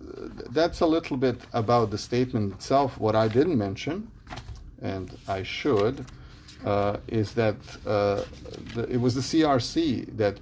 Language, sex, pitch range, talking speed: English, male, 100-120 Hz, 145 wpm